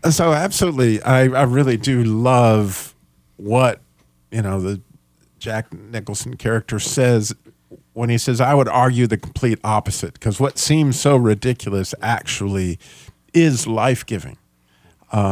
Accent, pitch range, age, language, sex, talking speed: American, 105-145 Hz, 50-69, English, male, 130 wpm